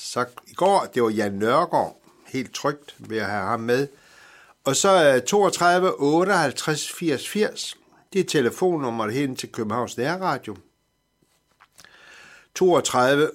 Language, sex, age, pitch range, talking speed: Danish, male, 60-79, 120-175 Hz, 130 wpm